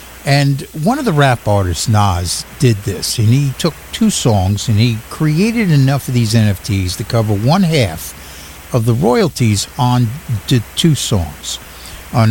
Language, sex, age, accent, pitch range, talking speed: English, male, 60-79, American, 100-155 Hz, 160 wpm